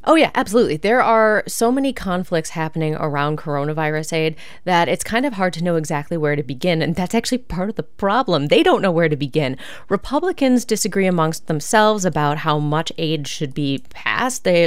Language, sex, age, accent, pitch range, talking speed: English, female, 20-39, American, 150-200 Hz, 190 wpm